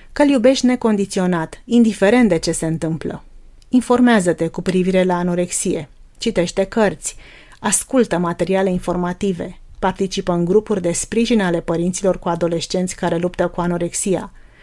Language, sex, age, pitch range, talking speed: Romanian, female, 30-49, 175-220 Hz, 125 wpm